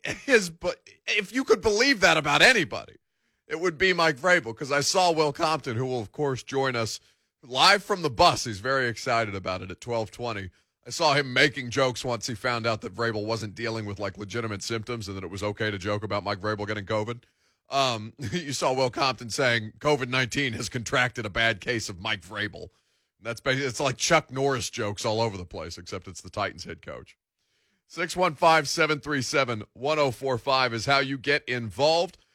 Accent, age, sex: American, 40-59, male